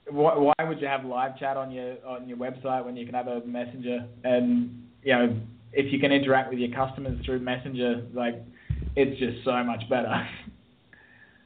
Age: 20-39